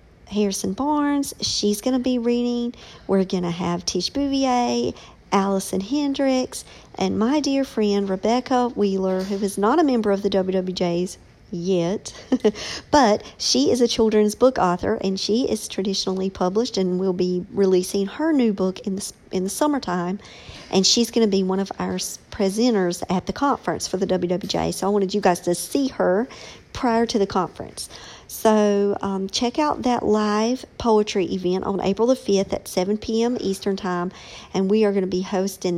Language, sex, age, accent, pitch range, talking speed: English, male, 50-69, American, 185-235 Hz, 170 wpm